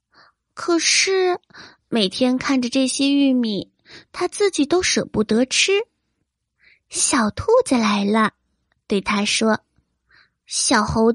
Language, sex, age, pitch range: Chinese, female, 20-39, 240-345 Hz